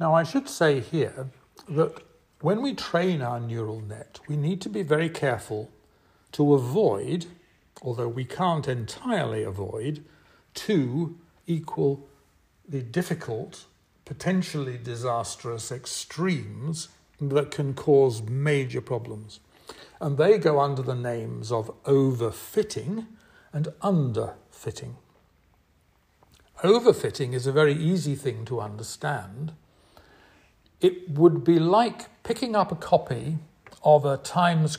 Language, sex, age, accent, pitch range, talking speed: English, male, 60-79, British, 120-165 Hz, 115 wpm